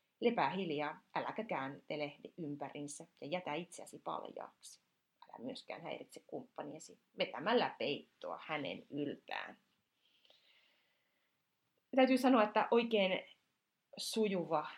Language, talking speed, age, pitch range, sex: Finnish, 95 wpm, 30-49, 165-215 Hz, female